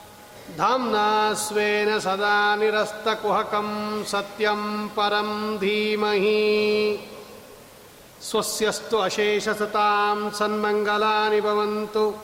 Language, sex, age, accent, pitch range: Kannada, male, 40-59, native, 210-215 Hz